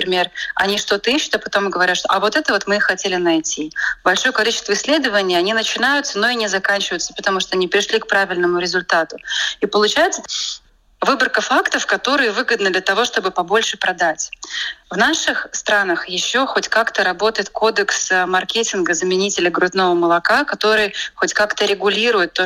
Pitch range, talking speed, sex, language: 185-225 Hz, 160 wpm, female, Russian